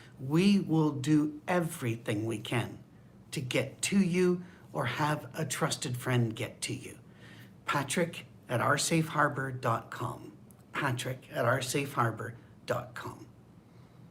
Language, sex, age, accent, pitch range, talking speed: English, male, 60-79, American, 130-180 Hz, 100 wpm